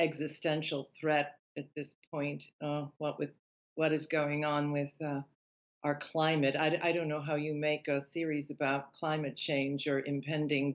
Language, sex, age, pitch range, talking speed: English, female, 50-69, 145-160 Hz, 170 wpm